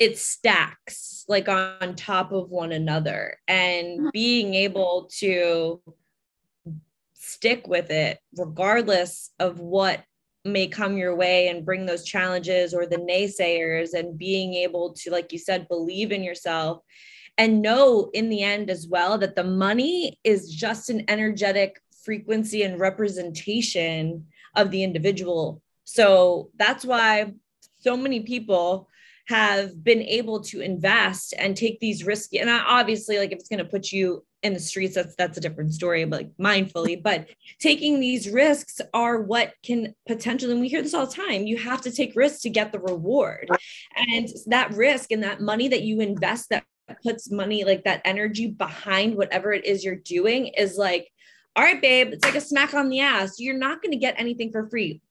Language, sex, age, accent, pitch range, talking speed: English, female, 20-39, American, 180-230 Hz, 175 wpm